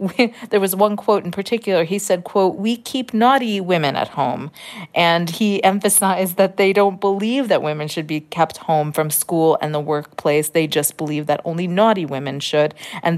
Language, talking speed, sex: English, 190 wpm, female